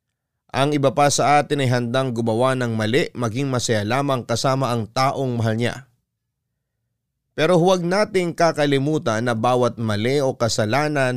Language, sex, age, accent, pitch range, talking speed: Filipino, male, 30-49, native, 115-140 Hz, 145 wpm